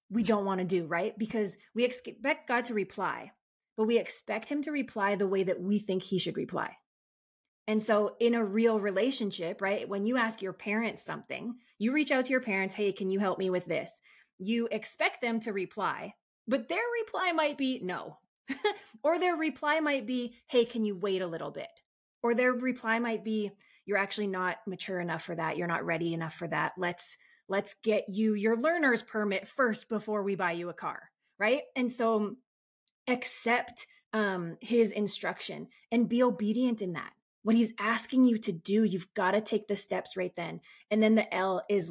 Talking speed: 200 wpm